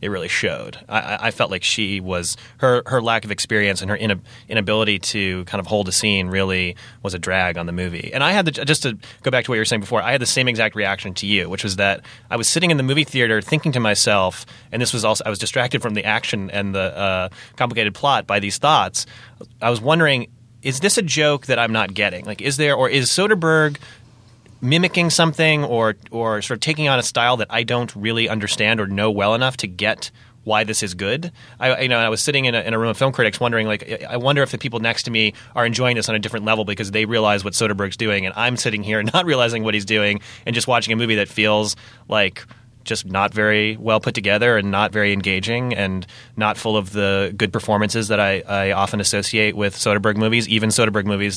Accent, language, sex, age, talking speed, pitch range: American, English, male, 30-49, 250 wpm, 100-120 Hz